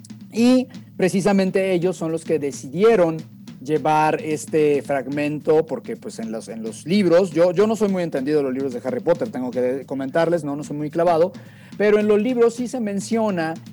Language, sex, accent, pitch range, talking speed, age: Spanish, male, Mexican, 145-215 Hz, 190 wpm, 40-59